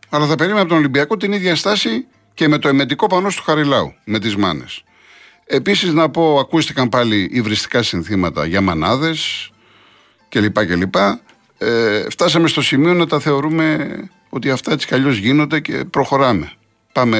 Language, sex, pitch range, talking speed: Greek, male, 105-155 Hz, 155 wpm